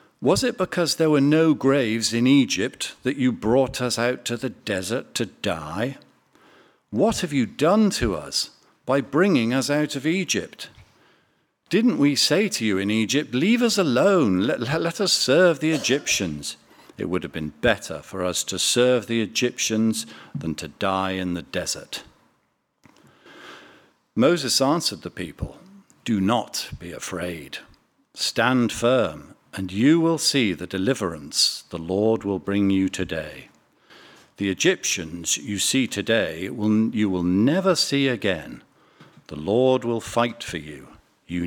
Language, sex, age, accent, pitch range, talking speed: English, male, 50-69, British, 95-140 Hz, 150 wpm